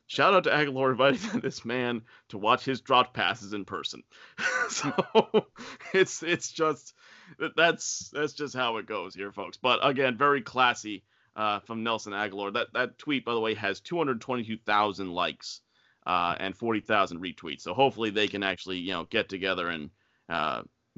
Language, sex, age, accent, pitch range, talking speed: English, male, 30-49, American, 105-135 Hz, 175 wpm